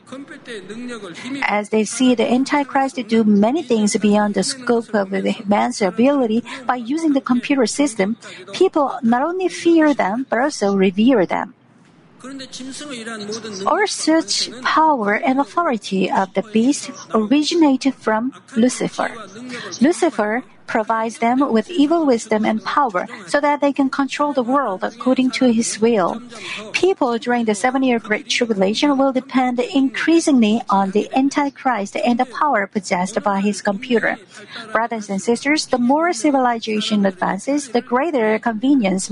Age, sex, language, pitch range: 50-69, female, Korean, 215-280 Hz